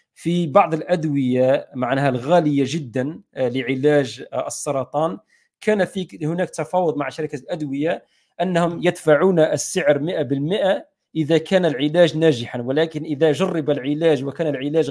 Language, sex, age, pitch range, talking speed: Arabic, male, 40-59, 130-160 Hz, 115 wpm